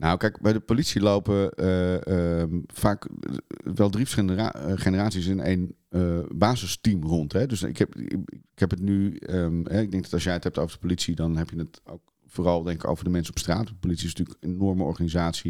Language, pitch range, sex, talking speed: Dutch, 85-100 Hz, male, 230 wpm